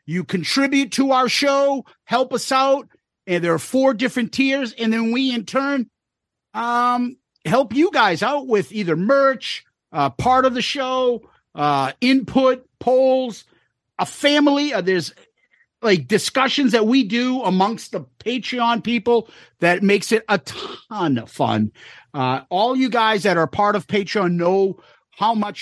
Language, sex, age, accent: English, male, 50-69, American